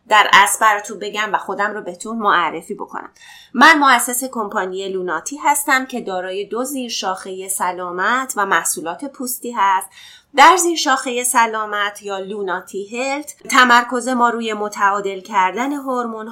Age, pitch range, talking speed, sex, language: 30-49, 190-245 Hz, 135 wpm, female, Persian